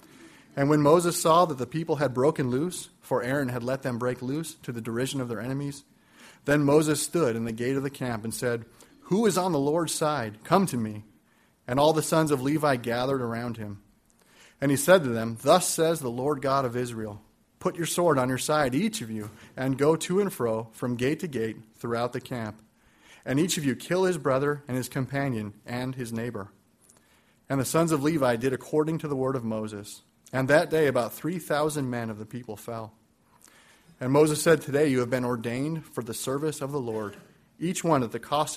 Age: 30-49